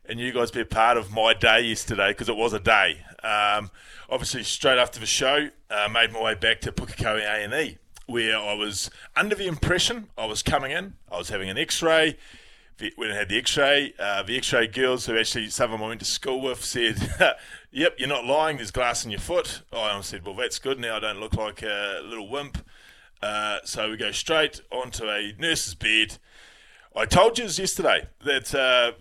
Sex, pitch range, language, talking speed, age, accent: male, 110-150 Hz, English, 215 wpm, 20-39, Australian